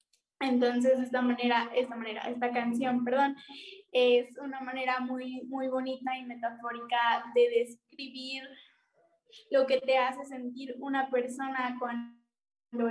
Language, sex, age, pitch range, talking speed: Spanish, female, 10-29, 240-265 Hz, 120 wpm